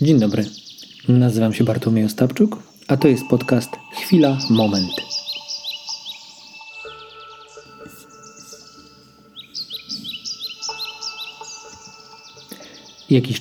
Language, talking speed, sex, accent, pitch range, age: Polish, 60 wpm, male, native, 110-140 Hz, 40-59